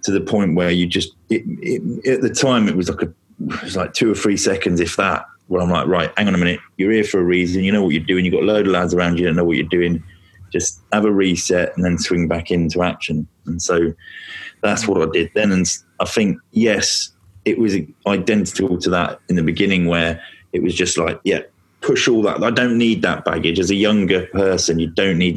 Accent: British